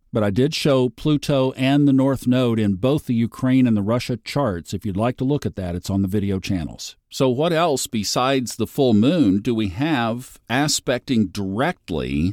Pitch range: 95-130 Hz